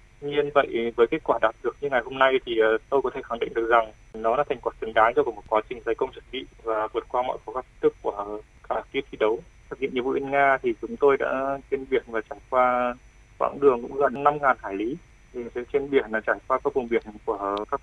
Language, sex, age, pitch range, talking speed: Vietnamese, male, 20-39, 115-155 Hz, 265 wpm